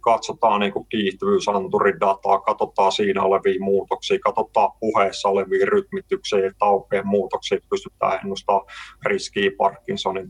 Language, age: Finnish, 30-49